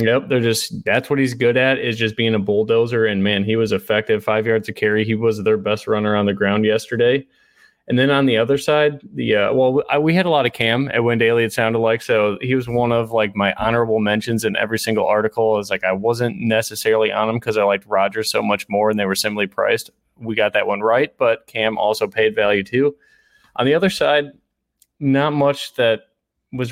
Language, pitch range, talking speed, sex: English, 105-120 Hz, 230 wpm, male